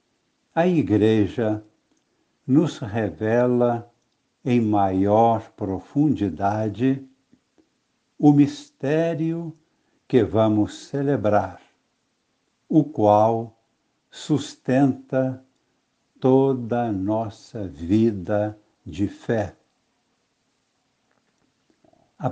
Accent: Brazilian